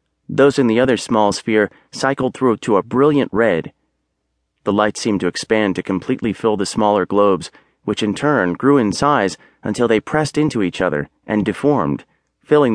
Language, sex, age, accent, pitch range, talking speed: English, male, 30-49, American, 90-125 Hz, 180 wpm